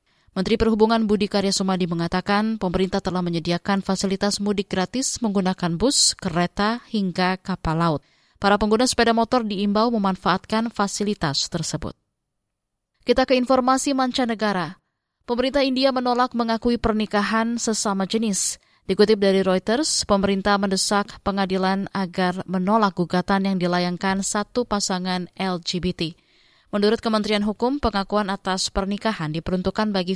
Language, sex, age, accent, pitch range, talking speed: Indonesian, female, 20-39, native, 180-220 Hz, 115 wpm